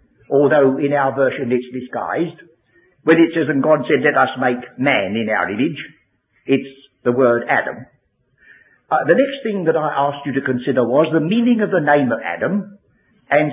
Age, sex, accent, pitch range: 60-79, male, British, 145-205 Hz